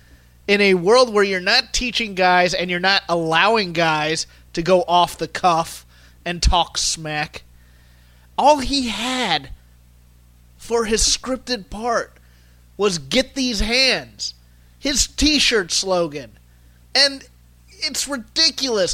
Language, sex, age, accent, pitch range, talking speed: English, male, 30-49, American, 165-245 Hz, 120 wpm